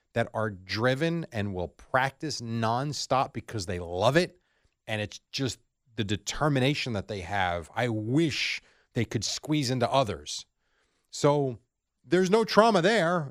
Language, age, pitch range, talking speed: English, 30-49, 105-140 Hz, 140 wpm